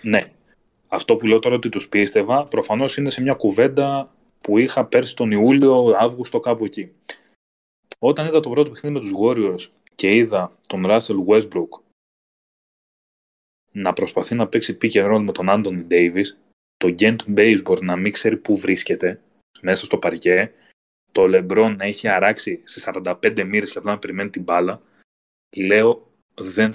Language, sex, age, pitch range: Greek, male, 20-39, 105-140 Hz